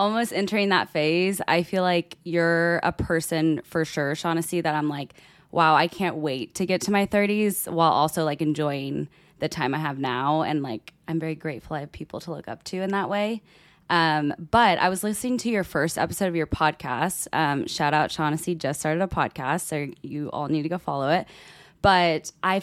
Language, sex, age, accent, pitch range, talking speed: English, female, 20-39, American, 155-180 Hz, 210 wpm